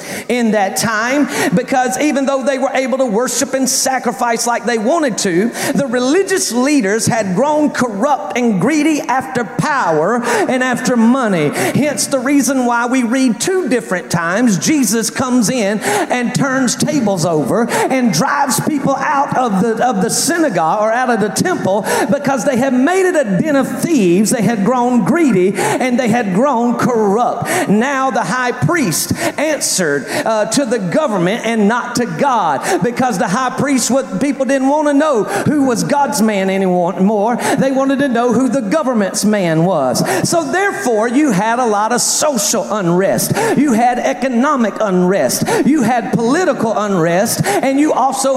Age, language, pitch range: 40-59, English, 215-270 Hz